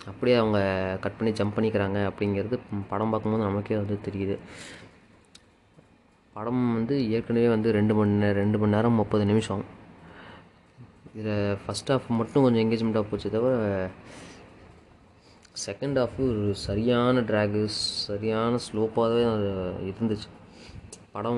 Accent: native